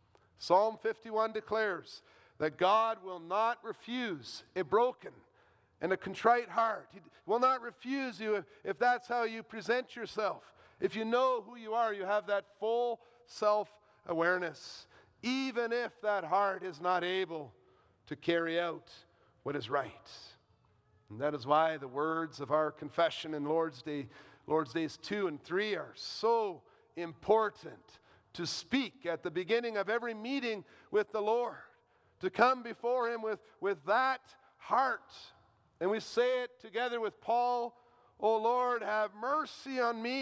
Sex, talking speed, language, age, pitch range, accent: male, 150 wpm, English, 50-69, 155-230 Hz, American